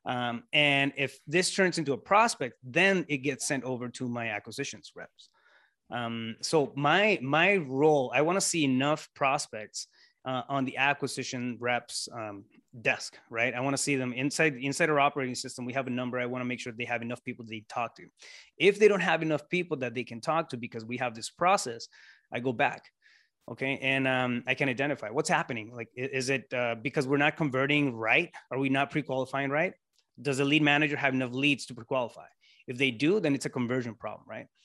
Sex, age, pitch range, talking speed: male, 30-49, 125-145 Hz, 210 wpm